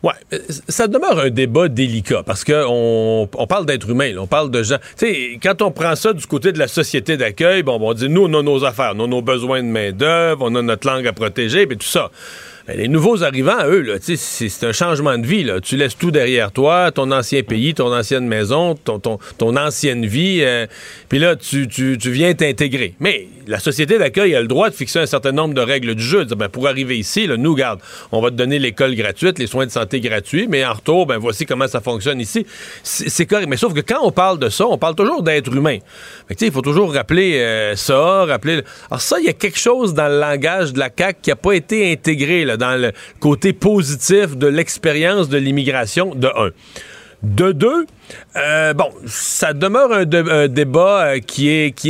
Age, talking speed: 40-59, 230 wpm